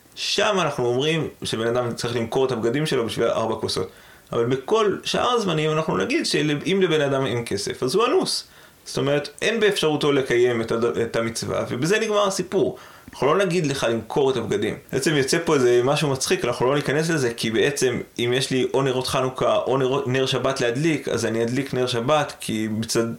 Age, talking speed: 20-39, 190 wpm